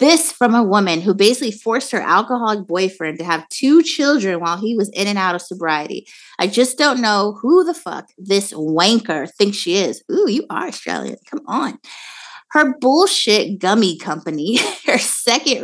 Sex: female